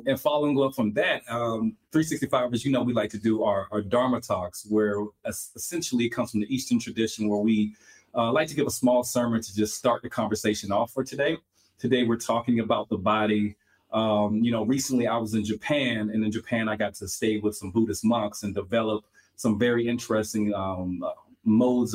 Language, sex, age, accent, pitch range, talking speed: English, male, 30-49, American, 105-120 Hz, 210 wpm